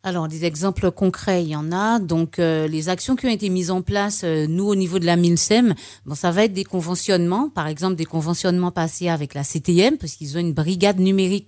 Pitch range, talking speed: 160-195 Hz, 230 wpm